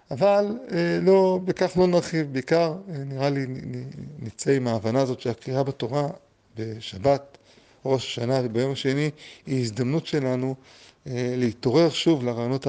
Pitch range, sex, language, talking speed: 115-140 Hz, male, Hebrew, 140 wpm